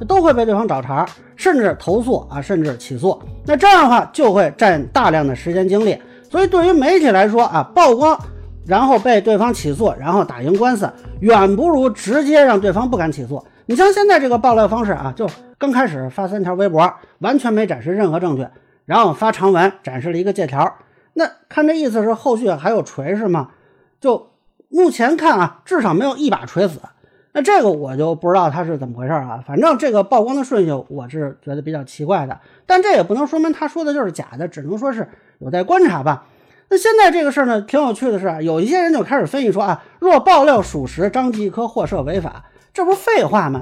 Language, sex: Chinese, male